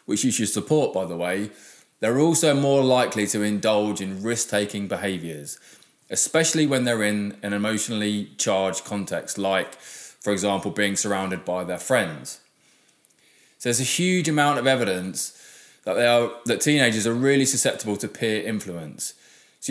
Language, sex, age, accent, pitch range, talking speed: English, male, 20-39, British, 100-130 Hz, 150 wpm